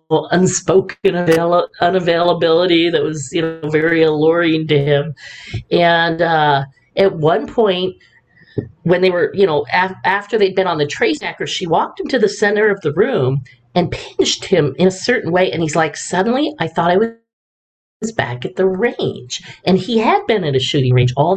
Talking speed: 185 wpm